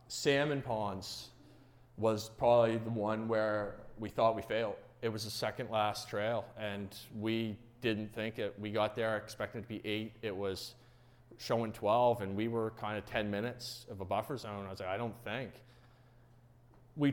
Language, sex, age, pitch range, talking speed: English, male, 30-49, 110-120 Hz, 180 wpm